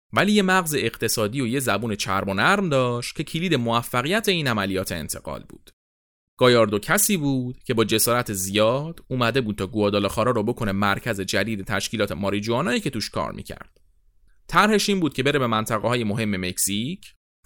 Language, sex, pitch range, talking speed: Persian, male, 100-145 Hz, 170 wpm